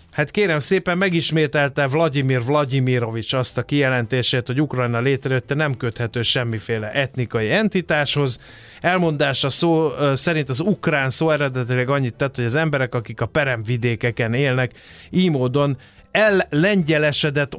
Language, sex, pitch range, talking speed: Hungarian, male, 125-155 Hz, 125 wpm